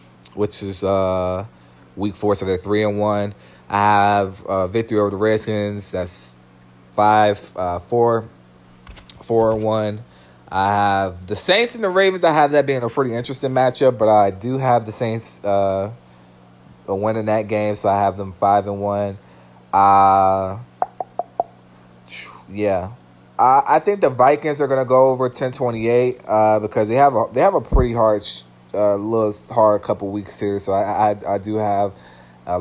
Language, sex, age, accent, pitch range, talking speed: English, male, 20-39, American, 90-105 Hz, 180 wpm